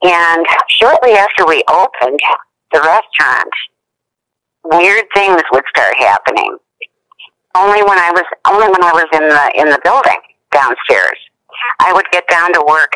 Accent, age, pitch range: American, 50-69, 135-195 Hz